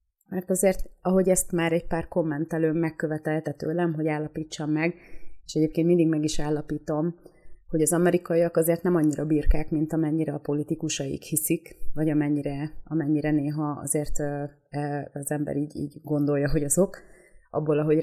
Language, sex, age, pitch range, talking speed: Hungarian, female, 30-49, 150-170 Hz, 150 wpm